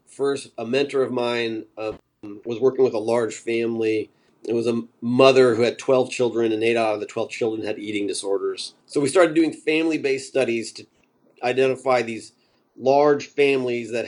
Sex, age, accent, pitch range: male, 40-59, American, 115-180 Hz